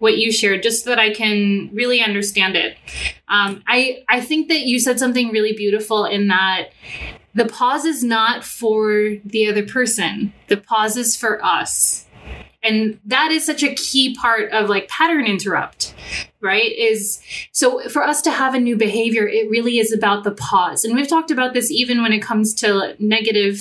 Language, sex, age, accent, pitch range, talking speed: English, female, 20-39, American, 205-250 Hz, 190 wpm